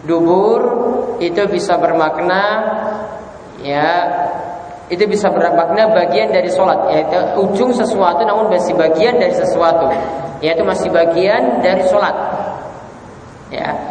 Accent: Indonesian